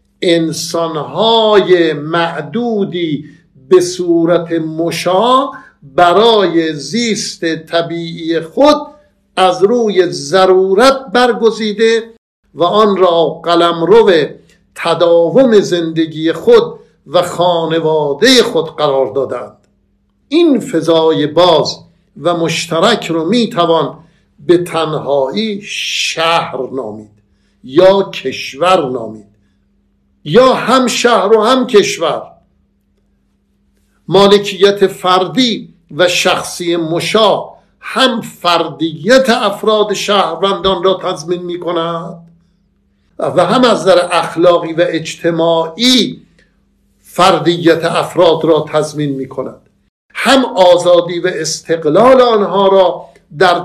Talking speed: 85 wpm